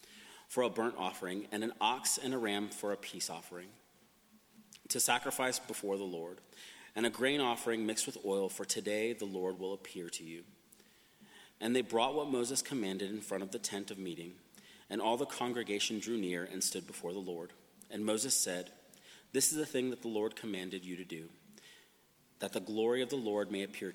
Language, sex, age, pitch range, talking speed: English, male, 30-49, 95-120 Hz, 200 wpm